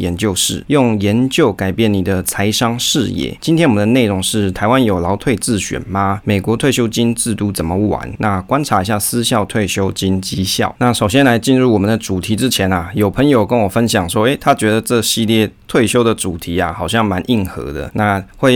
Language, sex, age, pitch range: Chinese, male, 20-39, 95-115 Hz